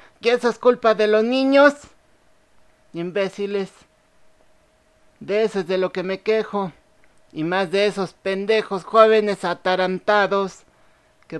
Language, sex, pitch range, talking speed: Spanish, male, 180-220 Hz, 125 wpm